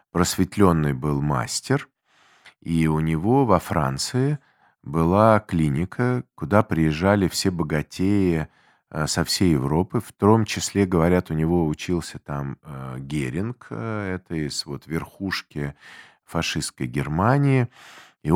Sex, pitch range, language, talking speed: male, 80-105 Hz, Russian, 105 wpm